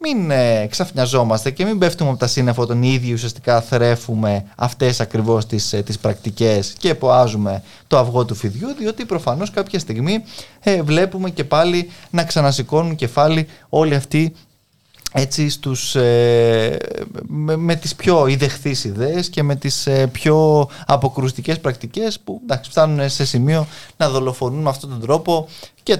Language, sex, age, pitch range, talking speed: Greek, male, 20-39, 115-160 Hz, 150 wpm